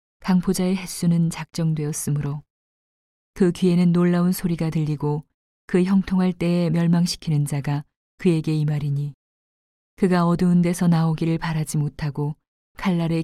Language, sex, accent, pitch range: Korean, female, native, 150-180 Hz